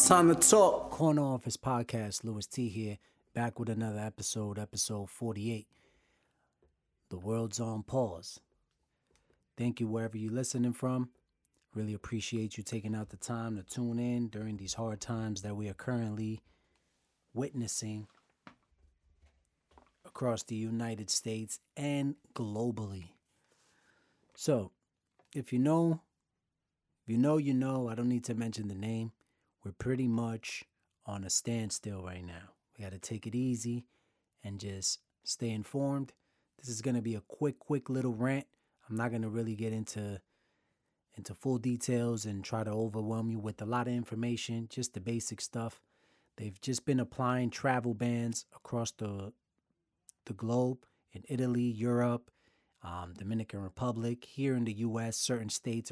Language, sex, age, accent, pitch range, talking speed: English, male, 30-49, American, 105-120 Hz, 150 wpm